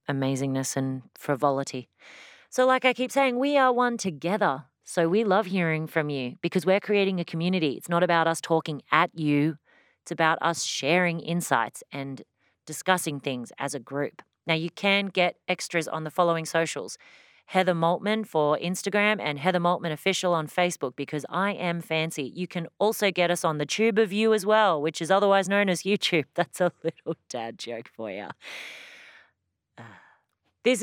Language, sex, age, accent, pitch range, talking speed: English, female, 30-49, Australian, 155-200 Hz, 175 wpm